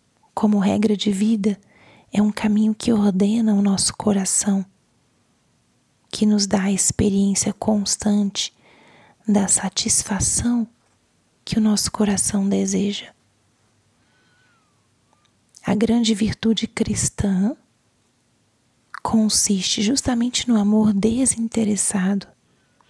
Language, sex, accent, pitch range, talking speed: Portuguese, female, Brazilian, 190-215 Hz, 90 wpm